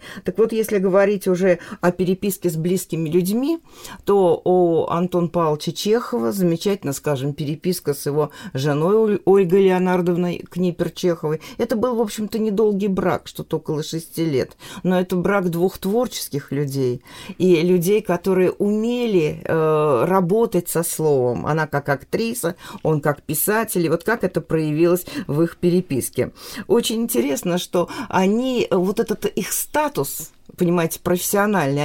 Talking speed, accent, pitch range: 140 wpm, native, 160-200 Hz